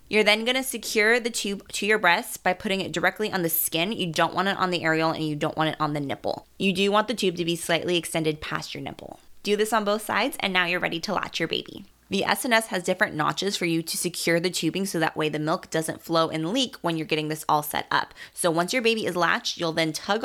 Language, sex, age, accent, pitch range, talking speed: English, female, 20-39, American, 160-200 Hz, 275 wpm